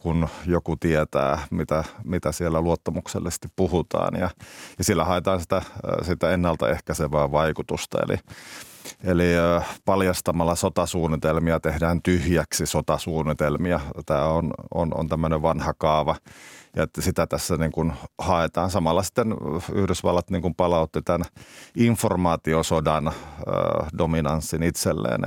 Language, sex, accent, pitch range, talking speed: Finnish, male, native, 80-90 Hz, 110 wpm